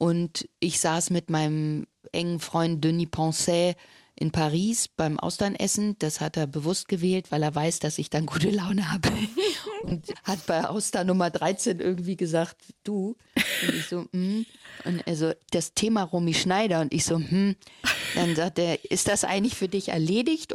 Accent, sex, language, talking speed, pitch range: German, female, German, 170 wpm, 160-200 Hz